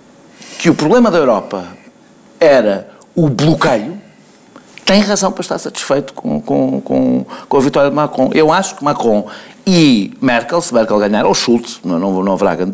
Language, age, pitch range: Portuguese, 50-69, 150-200 Hz